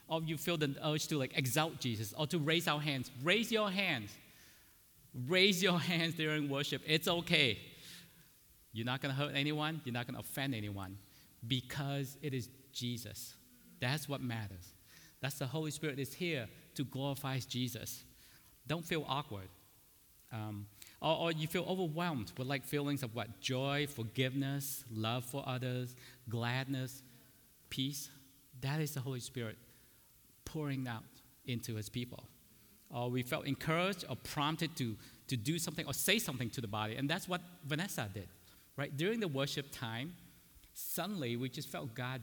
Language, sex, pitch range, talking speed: English, male, 120-155 Hz, 160 wpm